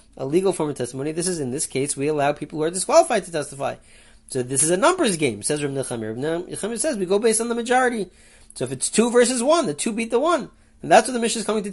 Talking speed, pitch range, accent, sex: 280 wpm, 145-230 Hz, American, male